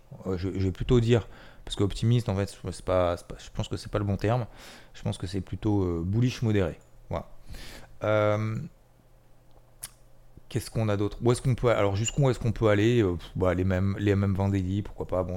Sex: male